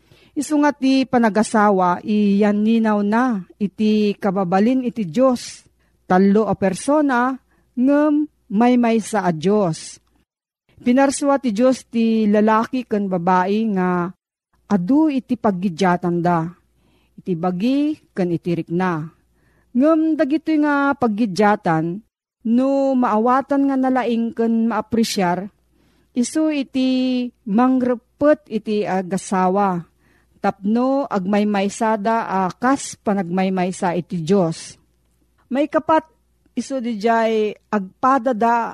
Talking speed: 100 wpm